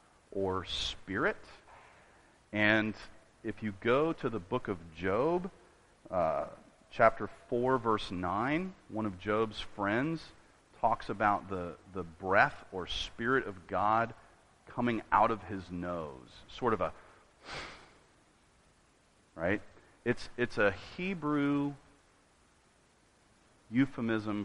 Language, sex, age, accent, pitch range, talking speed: English, male, 40-59, American, 95-115 Hz, 105 wpm